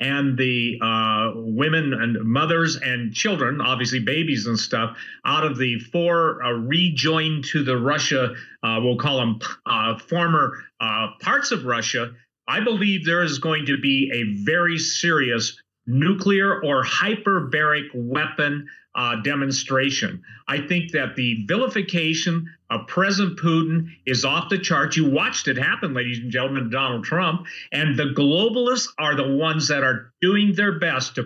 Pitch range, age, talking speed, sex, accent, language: 135-190 Hz, 50-69, 155 wpm, male, American, English